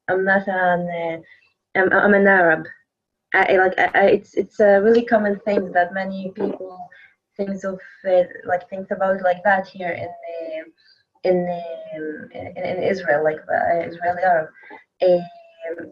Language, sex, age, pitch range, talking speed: English, female, 20-39, 180-210 Hz, 160 wpm